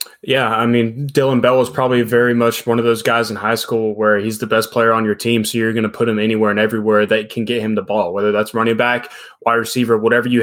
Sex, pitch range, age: male, 115-135 Hz, 20-39